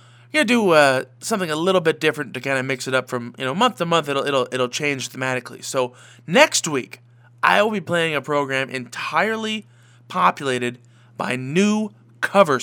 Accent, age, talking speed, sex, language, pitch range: American, 20-39, 185 wpm, male, English, 120-155 Hz